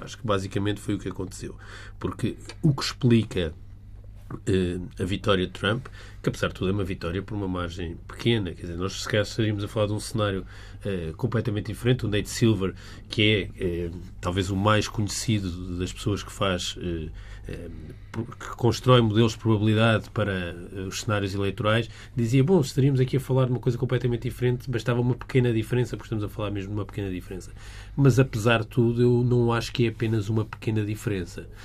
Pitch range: 100-115 Hz